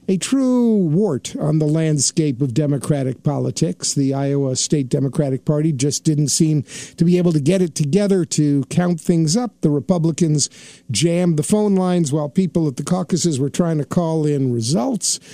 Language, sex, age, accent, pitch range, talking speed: English, male, 50-69, American, 145-180 Hz, 175 wpm